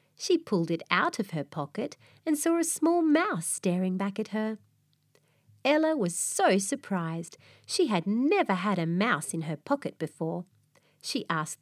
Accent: Australian